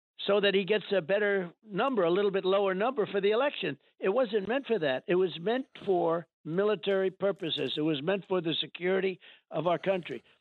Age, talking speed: 60-79, 200 wpm